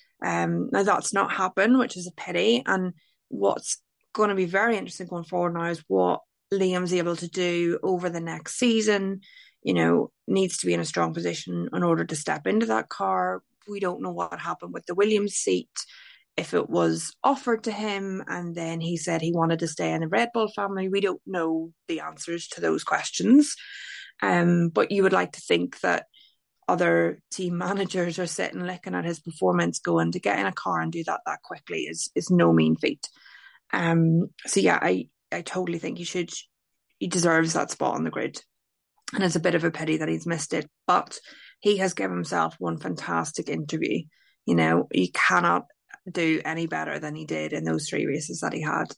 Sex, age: female, 20-39